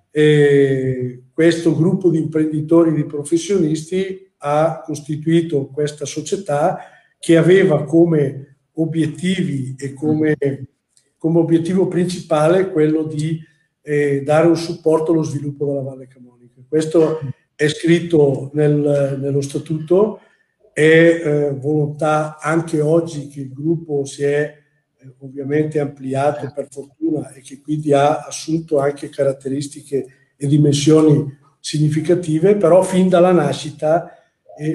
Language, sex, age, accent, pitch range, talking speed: Italian, male, 50-69, native, 145-165 Hz, 115 wpm